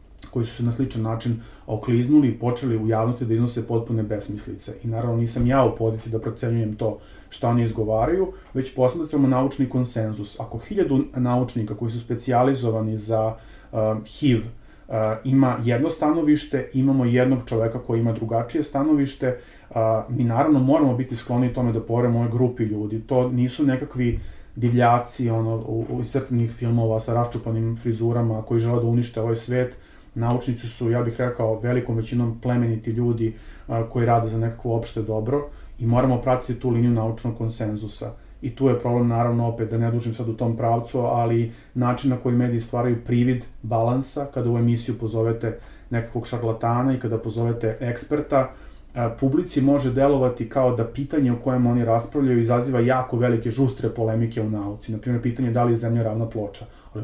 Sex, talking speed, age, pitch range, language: male, 170 wpm, 30-49, 115-125 Hz, Croatian